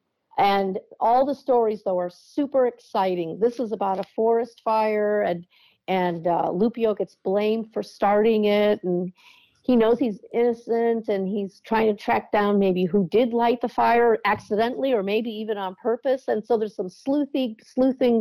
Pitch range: 185-235 Hz